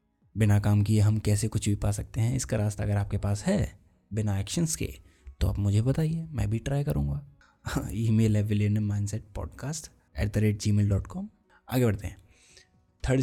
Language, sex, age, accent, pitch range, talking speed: Hindi, male, 20-39, native, 95-125 Hz, 175 wpm